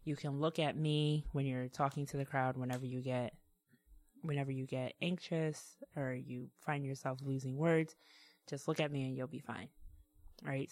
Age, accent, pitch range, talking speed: 20-39, American, 130-150 Hz, 185 wpm